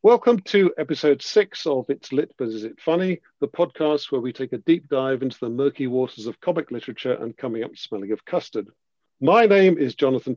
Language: English